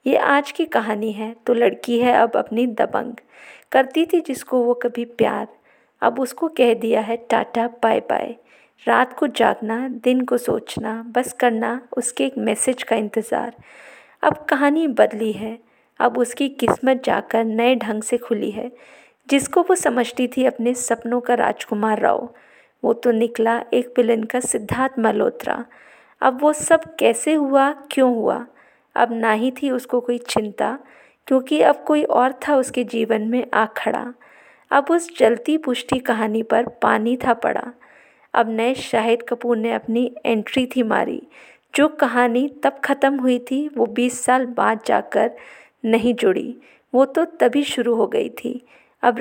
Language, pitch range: Hindi, 230-270 Hz